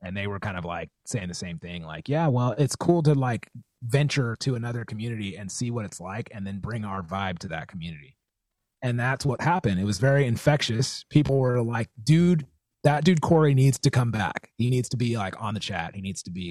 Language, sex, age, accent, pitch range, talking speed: English, male, 30-49, American, 100-140 Hz, 235 wpm